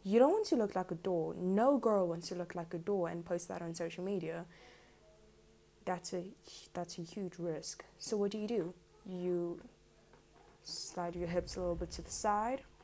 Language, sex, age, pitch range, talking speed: English, female, 20-39, 175-205 Hz, 200 wpm